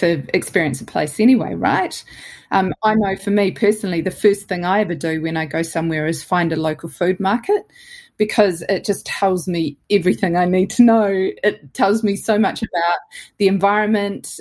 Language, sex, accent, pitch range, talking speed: English, female, Australian, 170-215 Hz, 190 wpm